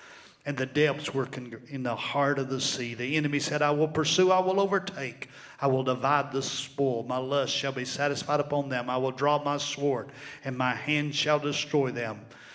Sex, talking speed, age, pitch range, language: male, 200 wpm, 50-69, 130-155 Hz, English